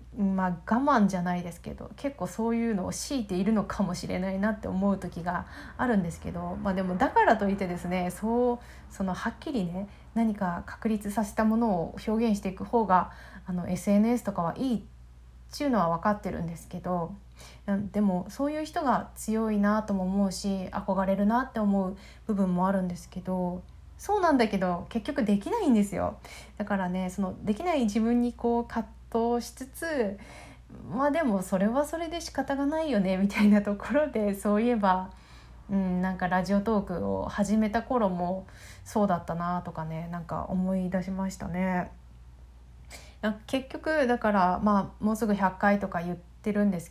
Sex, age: female, 20-39